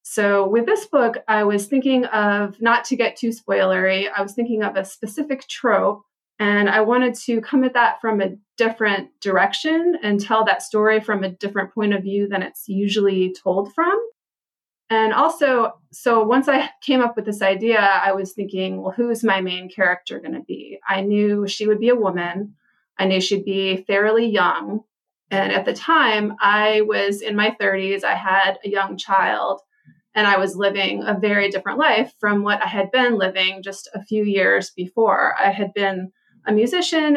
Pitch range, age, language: 195-230 Hz, 30-49, English